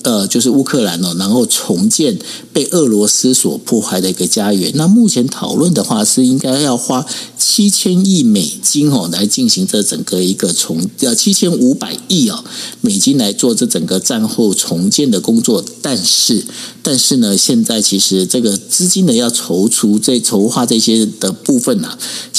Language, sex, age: Chinese, male, 50-69